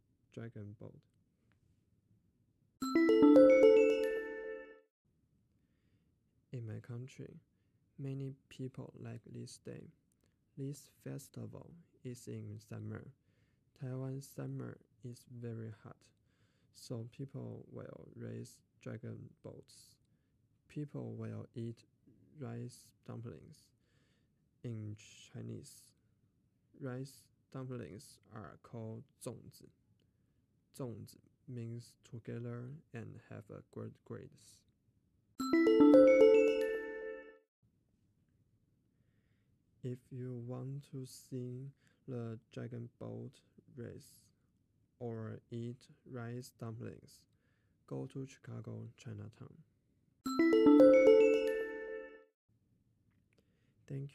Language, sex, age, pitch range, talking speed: English, male, 20-39, 110-130 Hz, 70 wpm